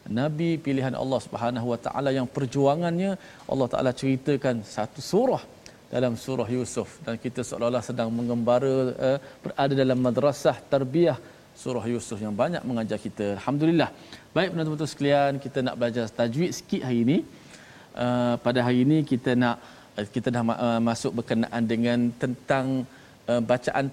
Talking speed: 135 wpm